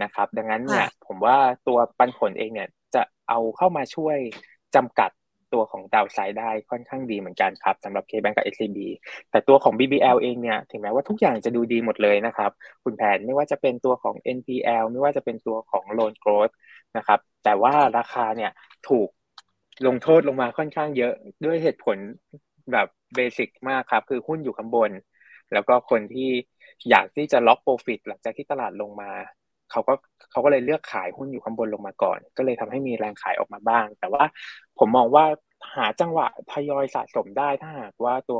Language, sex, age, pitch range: Thai, male, 20-39, 115-145 Hz